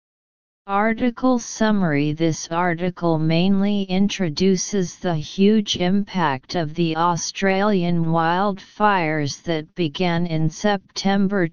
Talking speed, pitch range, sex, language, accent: 90 wpm, 165-200 Hz, female, English, American